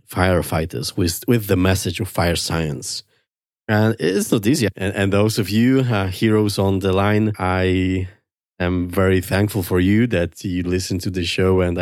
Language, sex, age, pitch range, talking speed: English, male, 30-49, 90-110 Hz, 180 wpm